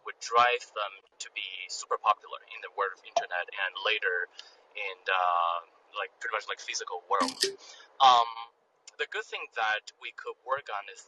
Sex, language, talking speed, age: male, English, 175 wpm, 20-39